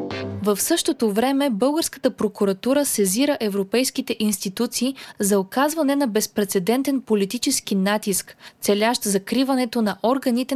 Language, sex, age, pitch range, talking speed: Bulgarian, female, 20-39, 205-265 Hz, 100 wpm